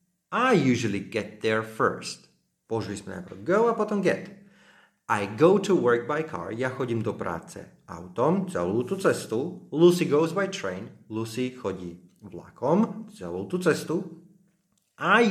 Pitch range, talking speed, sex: 100-165 Hz, 145 wpm, male